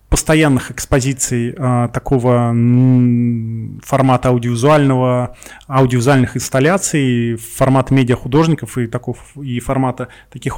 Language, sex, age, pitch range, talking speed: Russian, male, 20-39, 120-140 Hz, 90 wpm